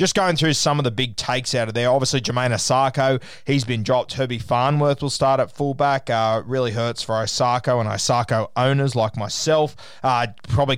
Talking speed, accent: 195 wpm, Australian